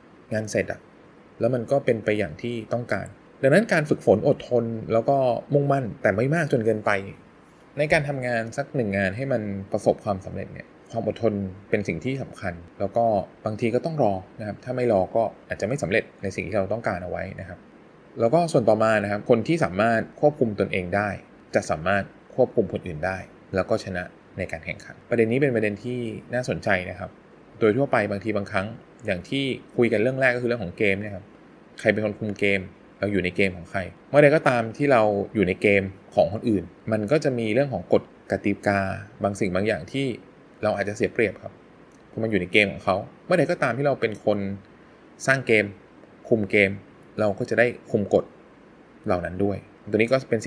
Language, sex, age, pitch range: Thai, male, 20-39, 100-125 Hz